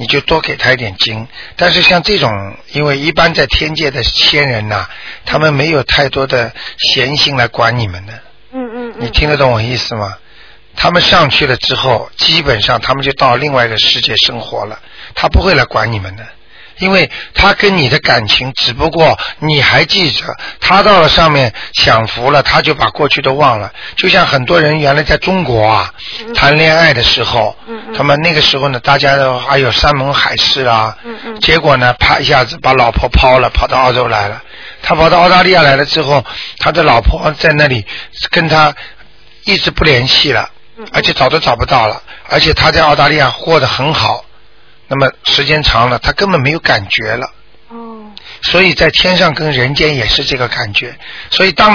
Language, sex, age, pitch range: Chinese, male, 50-69, 125-165 Hz